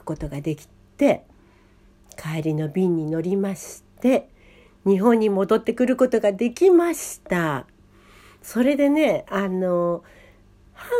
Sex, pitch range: female, 165-250 Hz